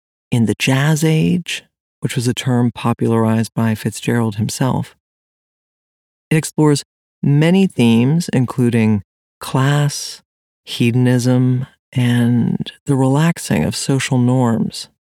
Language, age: English, 40-59